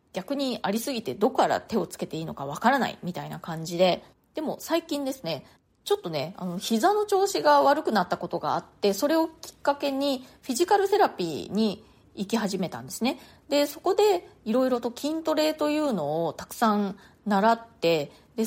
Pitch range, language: 185-270 Hz, Japanese